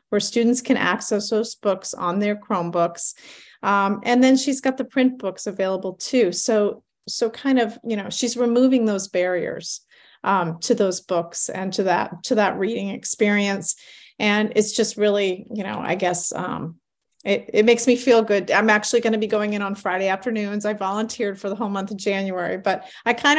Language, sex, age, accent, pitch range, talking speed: English, female, 30-49, American, 200-235 Hz, 190 wpm